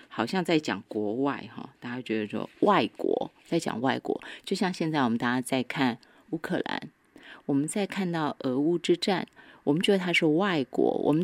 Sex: female